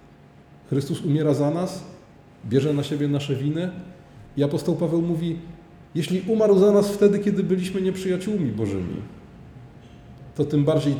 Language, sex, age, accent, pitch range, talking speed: Polish, male, 30-49, native, 120-160 Hz, 135 wpm